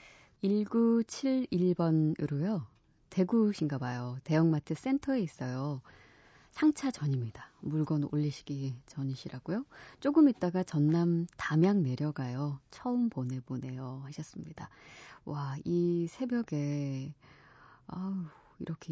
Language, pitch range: Korean, 145-200 Hz